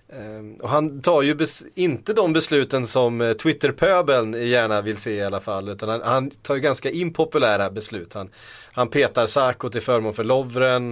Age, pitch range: 30-49, 110-135 Hz